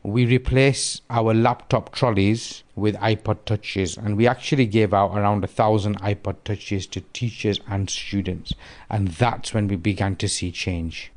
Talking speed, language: 160 wpm, English